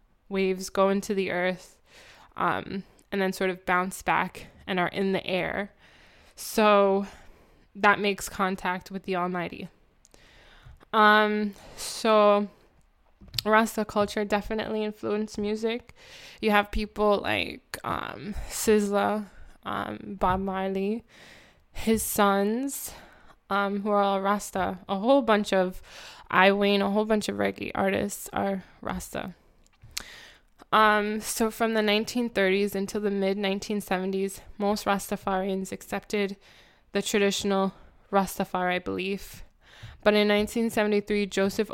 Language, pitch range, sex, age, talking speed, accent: English, 190-215 Hz, female, 10-29, 115 wpm, American